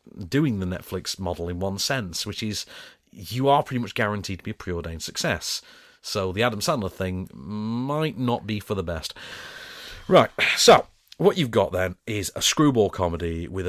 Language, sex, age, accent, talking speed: English, male, 40-59, British, 180 wpm